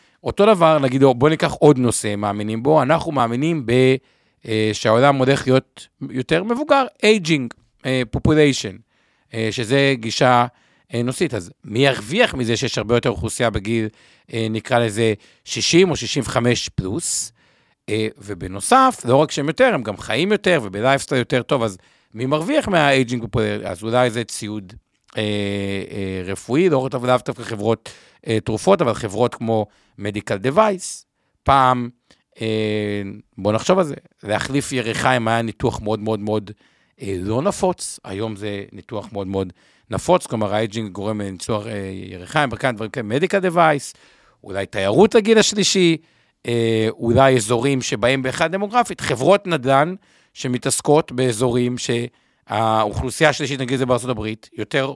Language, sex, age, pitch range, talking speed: Hebrew, male, 50-69, 110-145 Hz, 130 wpm